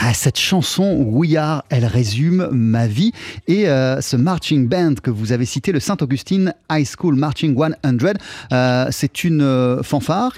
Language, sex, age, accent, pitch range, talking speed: French, male, 30-49, French, 130-185 Hz, 155 wpm